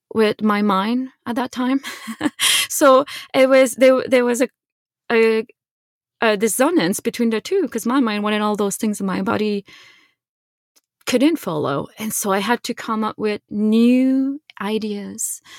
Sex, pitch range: female, 195-235 Hz